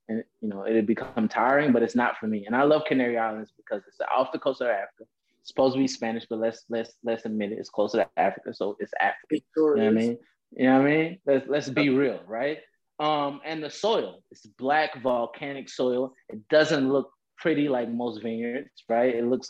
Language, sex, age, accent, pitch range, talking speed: English, male, 20-39, American, 115-140 Hz, 230 wpm